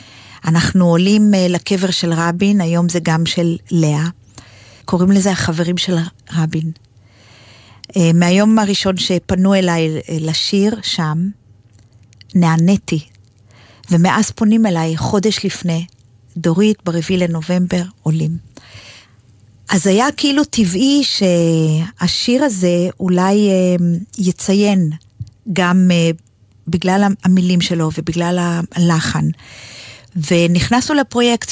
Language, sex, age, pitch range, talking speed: Hebrew, female, 40-59, 155-195 Hz, 90 wpm